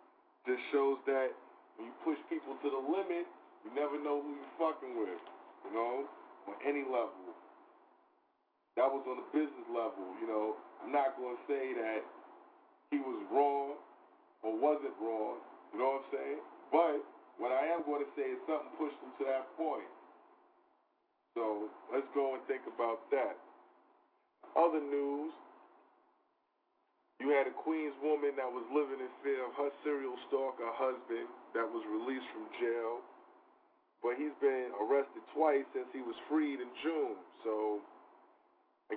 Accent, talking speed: American, 160 wpm